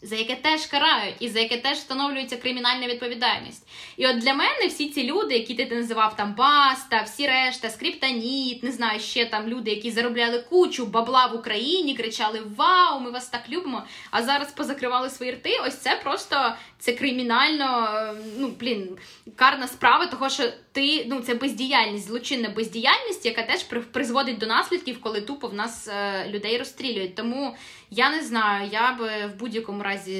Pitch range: 215-260 Hz